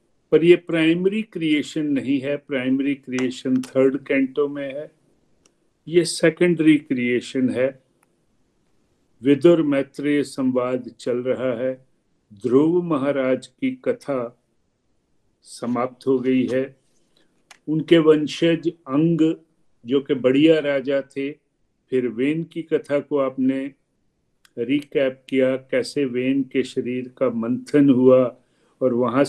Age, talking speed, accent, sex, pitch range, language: 50-69, 115 wpm, native, male, 130-160 Hz, Hindi